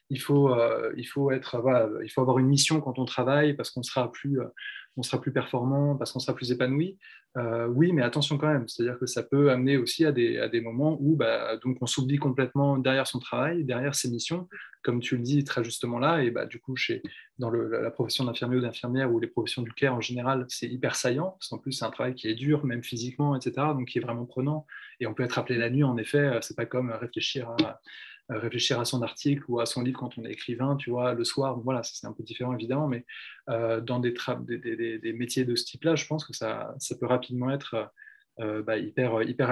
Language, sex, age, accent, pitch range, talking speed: French, male, 20-39, French, 120-140 Hz, 255 wpm